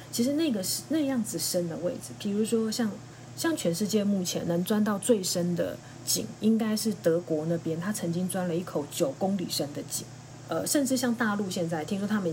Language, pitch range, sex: Chinese, 165-215 Hz, female